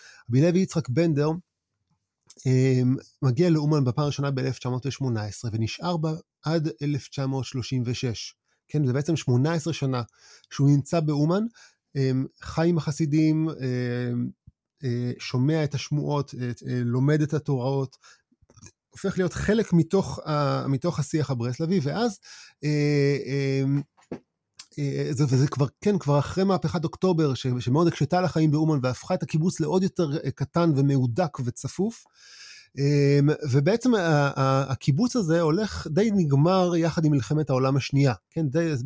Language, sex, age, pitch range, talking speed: Hebrew, male, 30-49, 130-160 Hz, 120 wpm